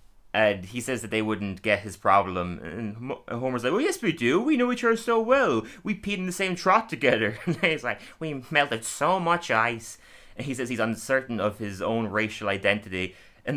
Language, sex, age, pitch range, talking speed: English, male, 30-49, 110-140 Hz, 210 wpm